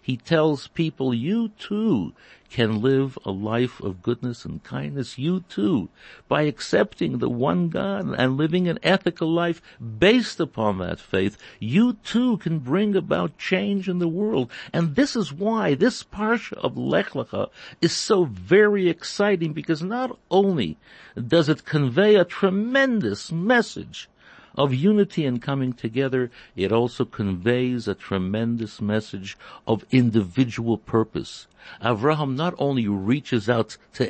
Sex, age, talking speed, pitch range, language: male, 60-79, 140 wpm, 110-180 Hz, English